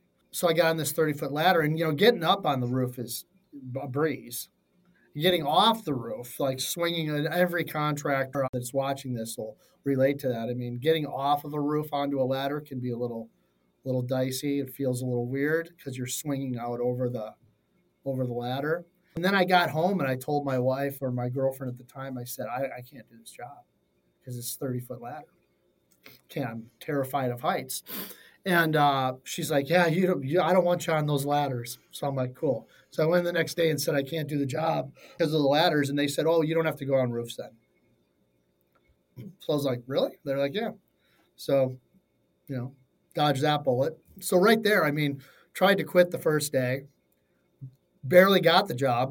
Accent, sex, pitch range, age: American, male, 125-155 Hz, 40-59